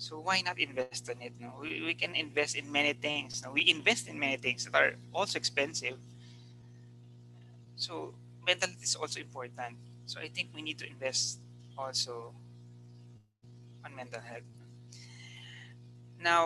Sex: male